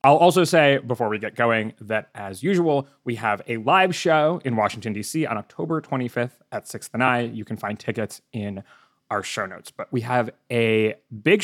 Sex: male